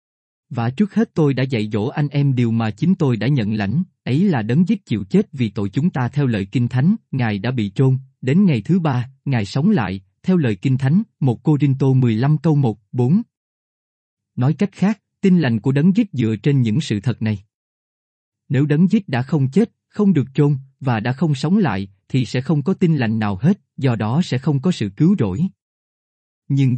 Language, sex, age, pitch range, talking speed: Vietnamese, male, 20-39, 115-175 Hz, 220 wpm